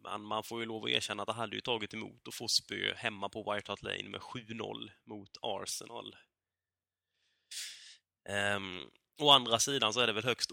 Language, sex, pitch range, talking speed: Swedish, male, 95-125 Hz, 180 wpm